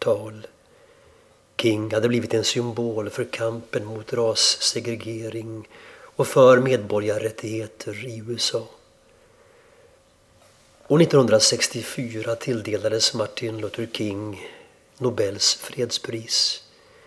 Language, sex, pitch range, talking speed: Swedish, male, 110-130 Hz, 75 wpm